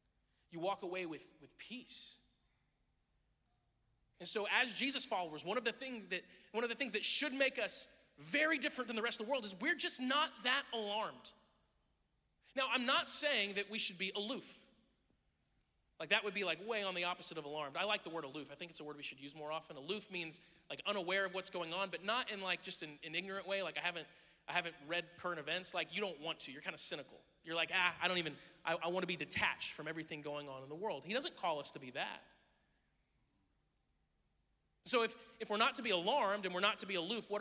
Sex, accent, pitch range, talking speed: male, American, 150-215 Hz, 235 wpm